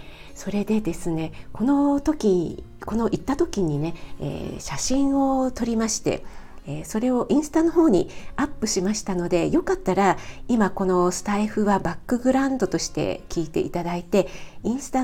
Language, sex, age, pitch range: Japanese, female, 40-59, 170-235 Hz